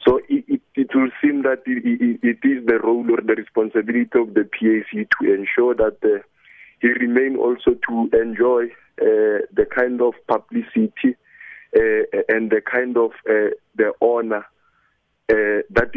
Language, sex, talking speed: English, male, 160 wpm